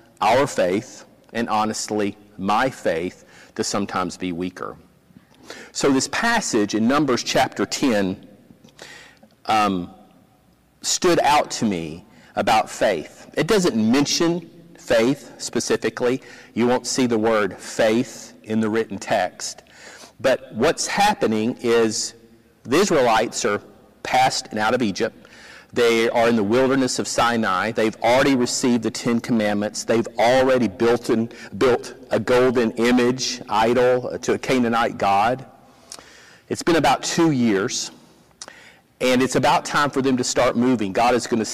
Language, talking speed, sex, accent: English, 135 wpm, male, American